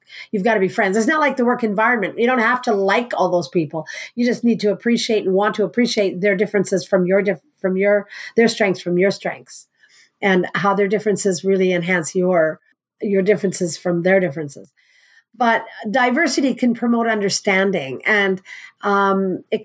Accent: American